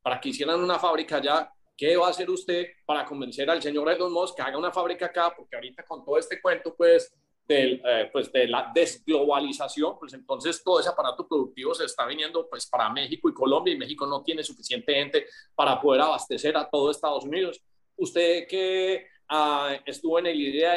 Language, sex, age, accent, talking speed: Spanish, male, 30-49, Colombian, 200 wpm